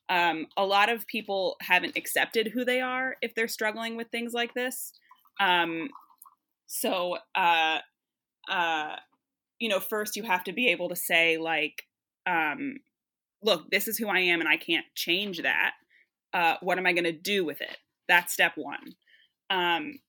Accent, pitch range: American, 170-225 Hz